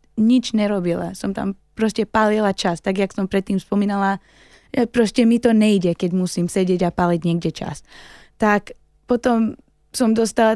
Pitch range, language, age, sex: 185-215 Hz, Slovak, 20-39, female